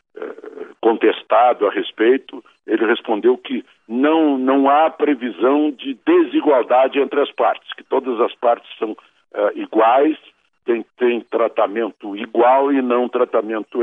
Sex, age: male, 60-79